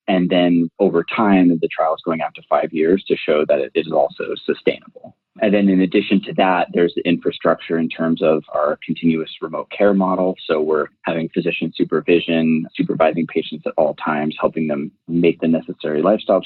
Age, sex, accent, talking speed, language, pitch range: 30-49, male, American, 190 wpm, English, 80-95 Hz